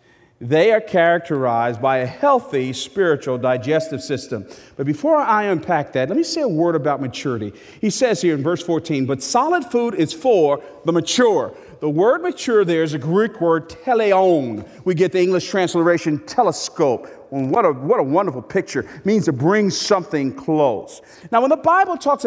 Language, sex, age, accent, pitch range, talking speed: English, male, 50-69, American, 145-215 Hz, 180 wpm